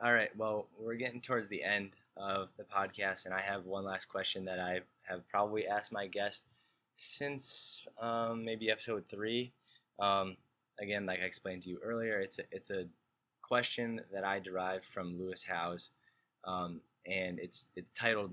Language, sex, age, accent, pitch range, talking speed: English, male, 20-39, American, 95-110 Hz, 170 wpm